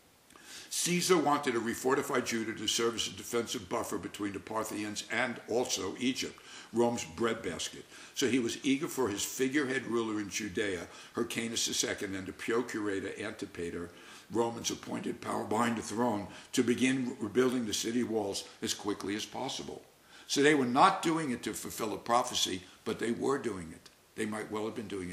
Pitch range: 105-130 Hz